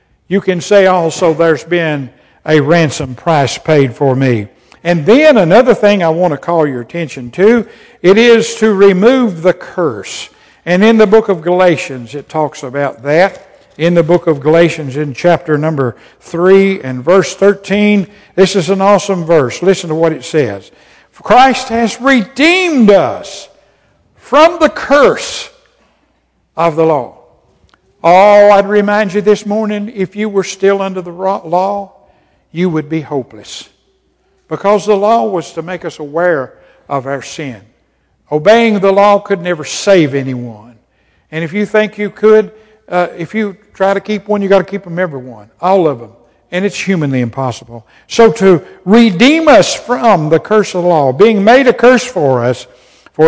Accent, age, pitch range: American, 60-79, 155-210 Hz